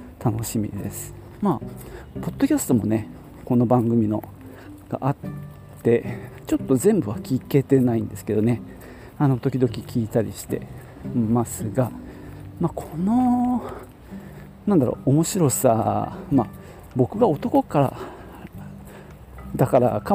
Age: 40-59